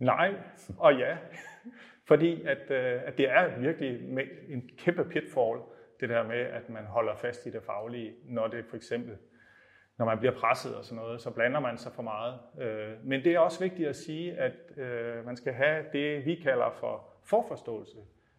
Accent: native